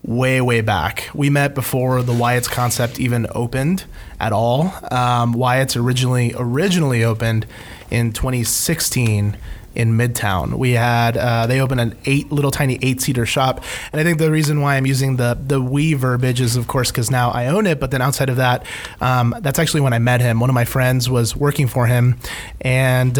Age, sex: 20-39, male